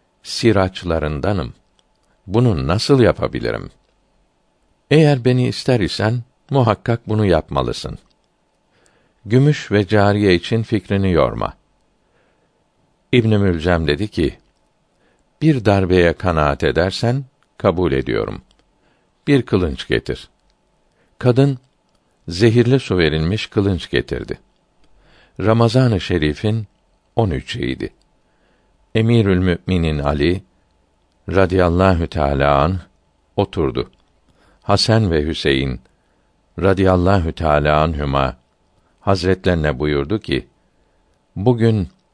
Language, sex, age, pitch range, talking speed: Turkish, male, 60-79, 80-110 Hz, 80 wpm